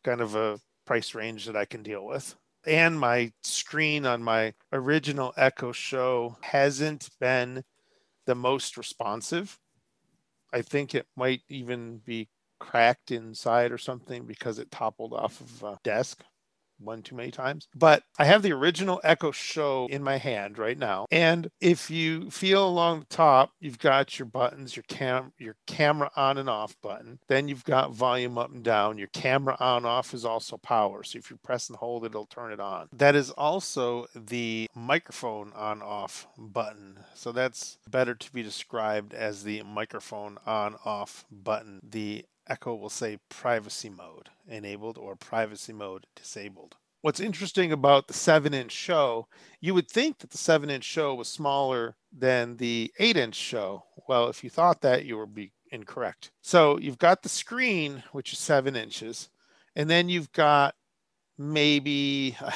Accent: American